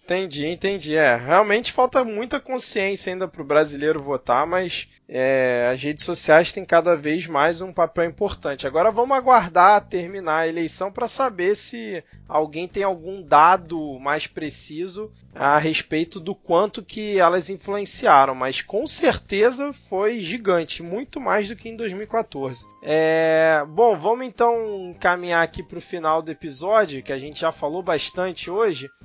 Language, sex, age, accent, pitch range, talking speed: Portuguese, male, 20-39, Brazilian, 155-200 Hz, 155 wpm